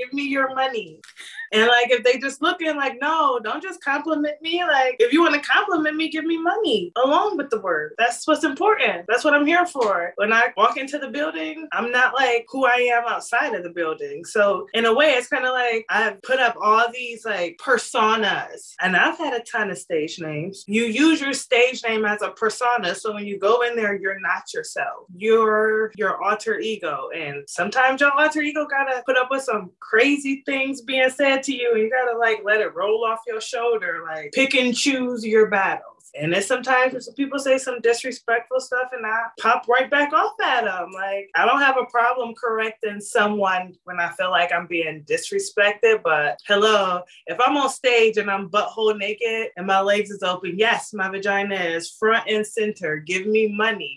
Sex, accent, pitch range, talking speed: female, American, 200-270 Hz, 210 wpm